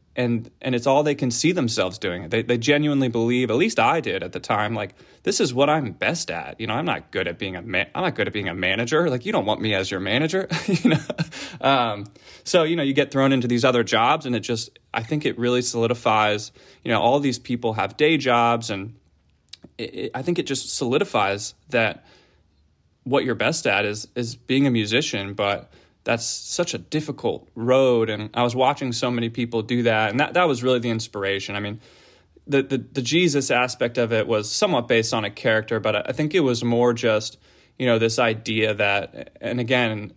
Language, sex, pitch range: English, male, 110-130 Hz